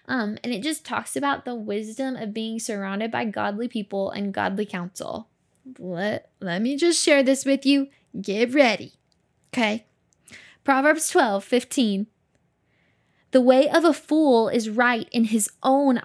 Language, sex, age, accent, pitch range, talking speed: English, female, 10-29, American, 225-280 Hz, 155 wpm